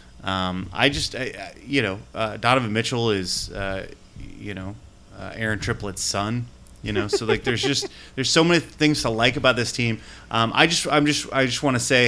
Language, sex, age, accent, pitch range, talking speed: English, male, 30-49, American, 100-125 Hz, 210 wpm